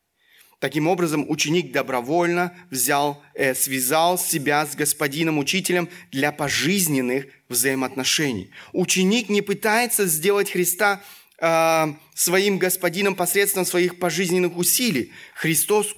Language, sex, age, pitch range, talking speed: Russian, male, 30-49, 135-175 Hz, 90 wpm